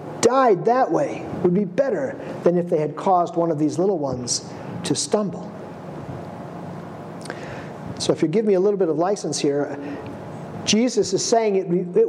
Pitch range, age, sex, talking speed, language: 170-235 Hz, 50-69, male, 165 wpm, English